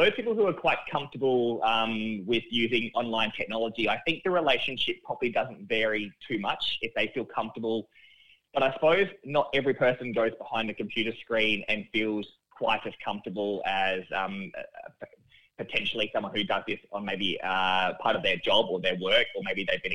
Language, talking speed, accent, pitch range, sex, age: English, 185 wpm, Australian, 100-120 Hz, male, 20-39